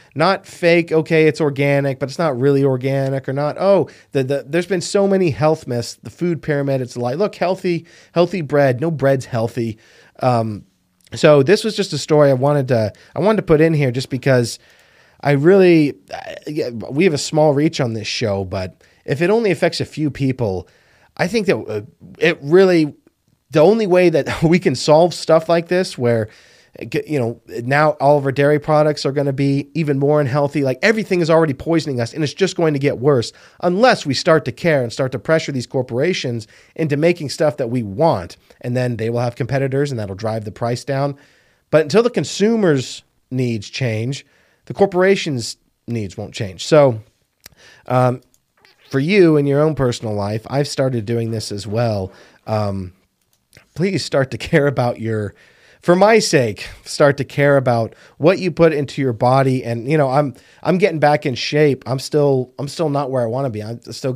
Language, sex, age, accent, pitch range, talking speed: English, male, 30-49, American, 120-160 Hz, 195 wpm